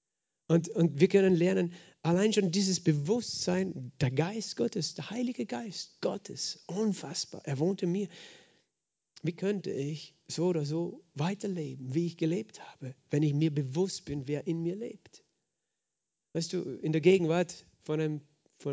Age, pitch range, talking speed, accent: 40-59, 140-175 Hz, 155 wpm, German